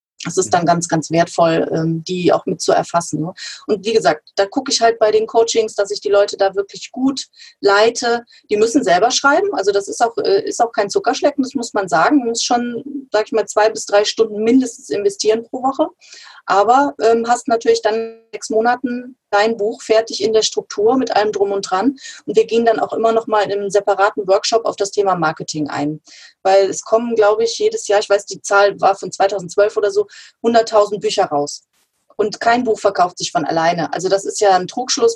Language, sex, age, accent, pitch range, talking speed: German, female, 30-49, German, 195-240 Hz, 215 wpm